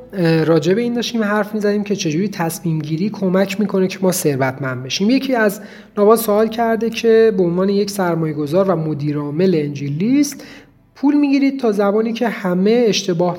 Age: 40-59